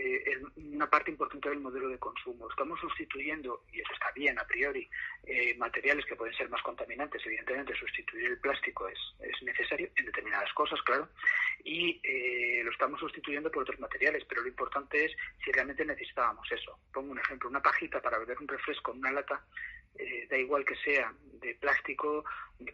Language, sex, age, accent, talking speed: Spanish, male, 40-59, Spanish, 180 wpm